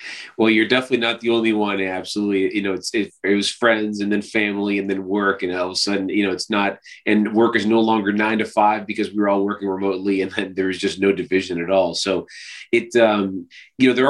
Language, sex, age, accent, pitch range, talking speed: English, male, 30-49, American, 100-115 Hz, 245 wpm